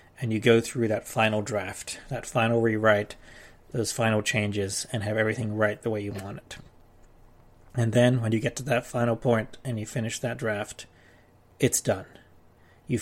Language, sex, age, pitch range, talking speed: English, male, 30-49, 110-125 Hz, 180 wpm